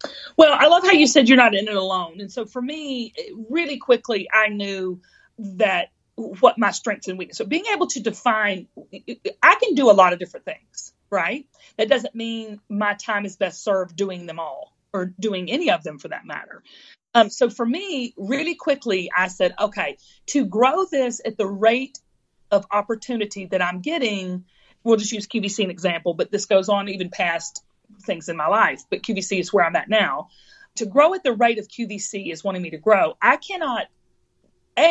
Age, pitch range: 40-59, 195-280 Hz